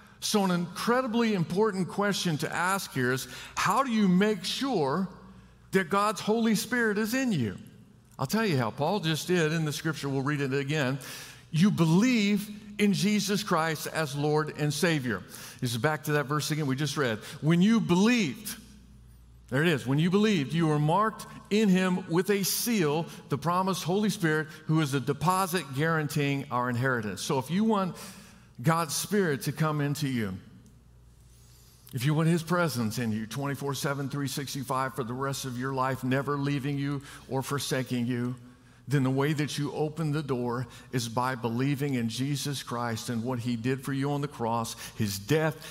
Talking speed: 180 wpm